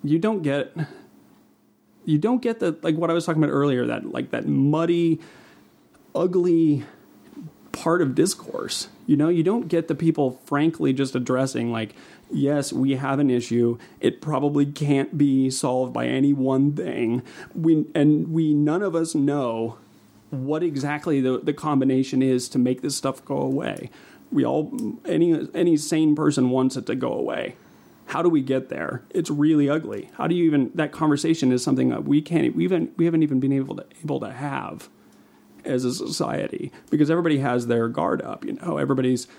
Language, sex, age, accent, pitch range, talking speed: English, male, 30-49, American, 130-160 Hz, 180 wpm